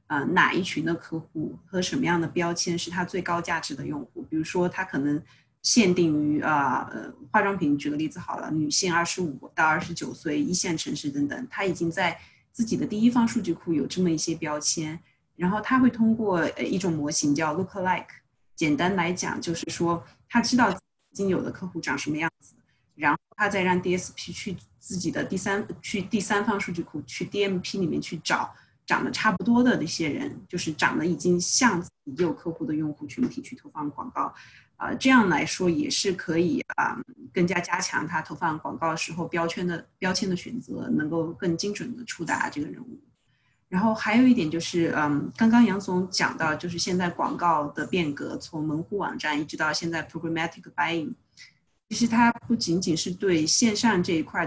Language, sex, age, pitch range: Chinese, female, 20-39, 160-205 Hz